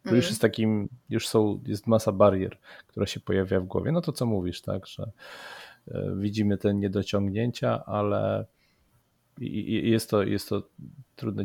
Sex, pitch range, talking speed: male, 100-125 Hz, 160 wpm